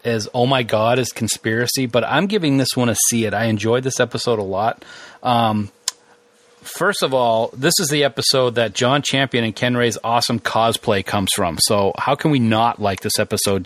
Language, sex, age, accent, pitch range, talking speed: English, male, 30-49, American, 110-130 Hz, 200 wpm